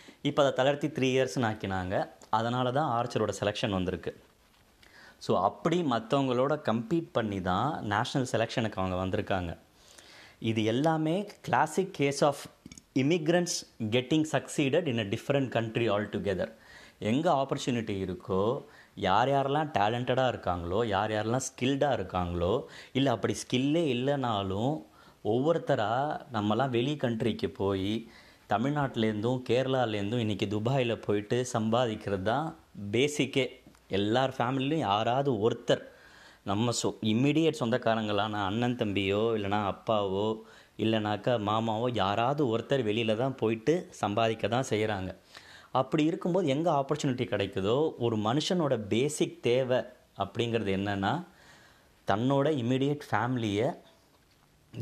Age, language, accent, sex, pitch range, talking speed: 30-49, Tamil, native, male, 105-140 Hz, 105 wpm